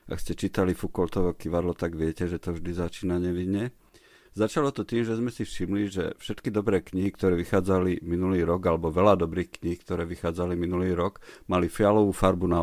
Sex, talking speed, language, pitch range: male, 185 wpm, Slovak, 90-105 Hz